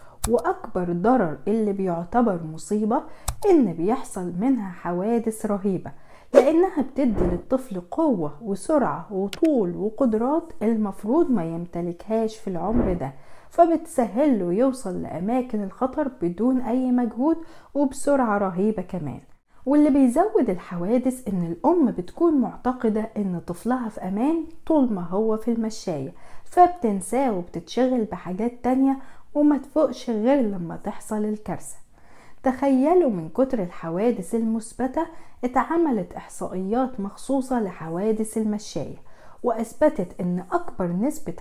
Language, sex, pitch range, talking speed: Arabic, female, 195-270 Hz, 105 wpm